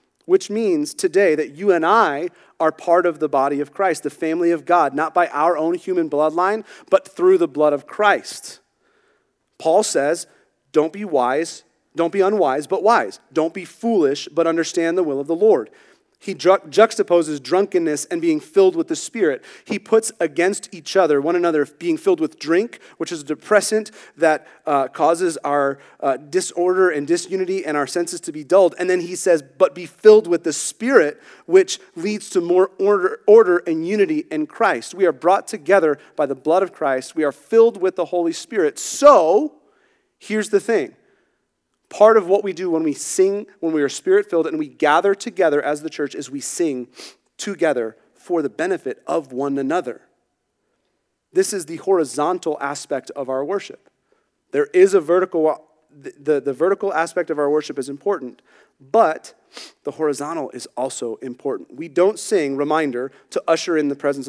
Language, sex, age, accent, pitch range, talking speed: English, male, 30-49, American, 155-225 Hz, 180 wpm